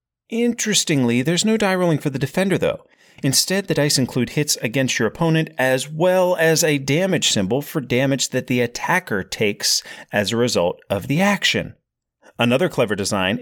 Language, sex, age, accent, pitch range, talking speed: English, male, 30-49, American, 110-180 Hz, 170 wpm